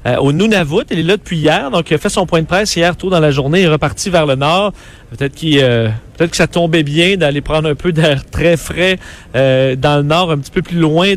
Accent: Canadian